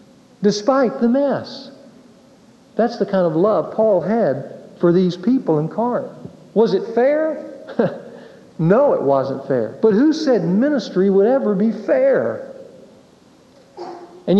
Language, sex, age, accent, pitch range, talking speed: English, male, 50-69, American, 145-215 Hz, 130 wpm